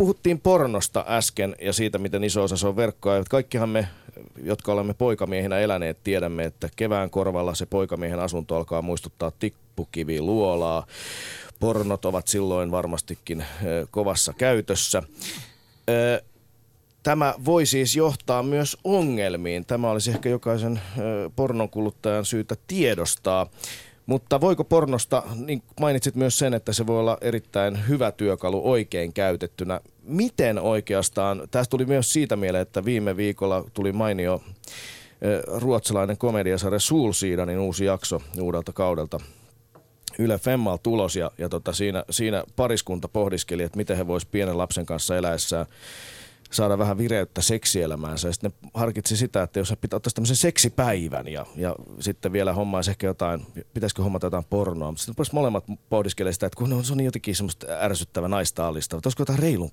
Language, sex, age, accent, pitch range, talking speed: Finnish, male, 30-49, native, 90-120 Hz, 145 wpm